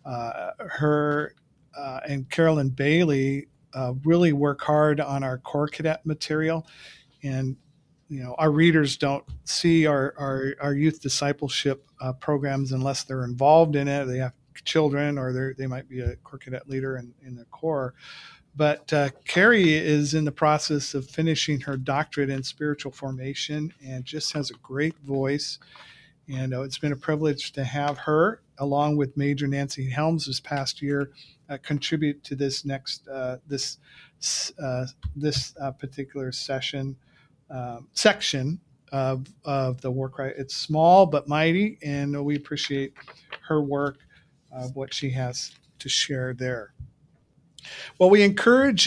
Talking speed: 150 wpm